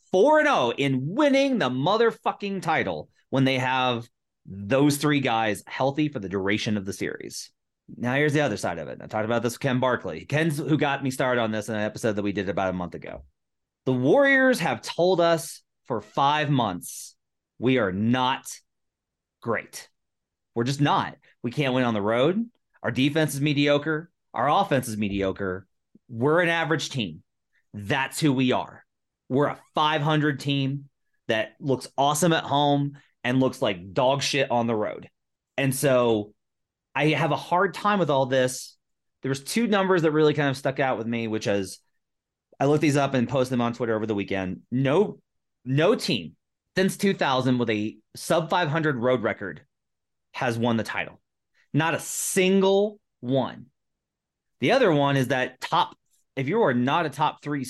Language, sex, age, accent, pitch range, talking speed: English, male, 30-49, American, 115-155 Hz, 180 wpm